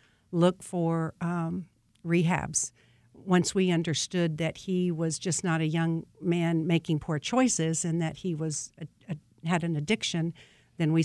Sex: female